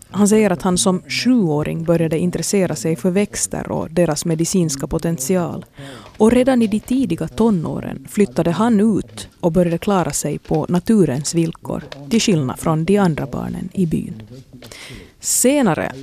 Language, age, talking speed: Swedish, 30-49, 150 wpm